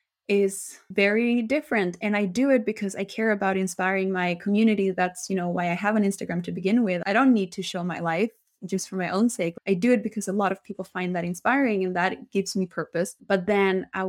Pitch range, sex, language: 180-215 Hz, female, English